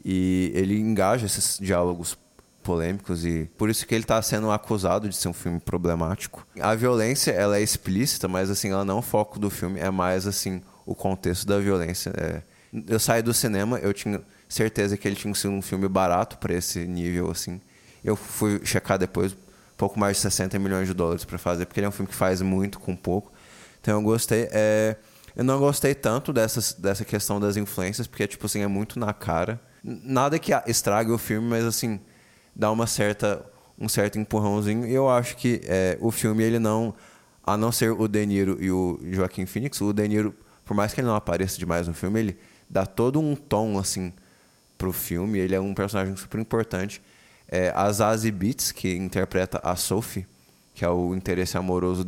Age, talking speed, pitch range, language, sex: 20-39, 200 wpm, 95-110 Hz, Portuguese, male